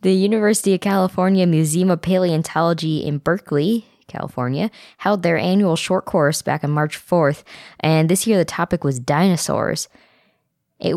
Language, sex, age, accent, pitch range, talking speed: English, female, 20-39, American, 145-185 Hz, 150 wpm